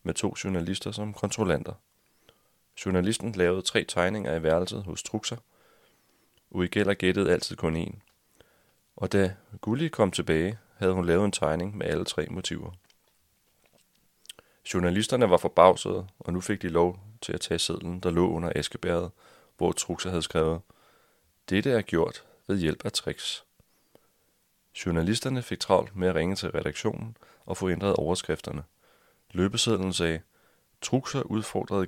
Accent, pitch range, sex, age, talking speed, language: native, 85-100 Hz, male, 30-49, 140 wpm, Danish